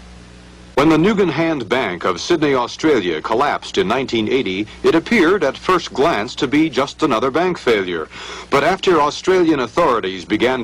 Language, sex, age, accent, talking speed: English, male, 60-79, American, 150 wpm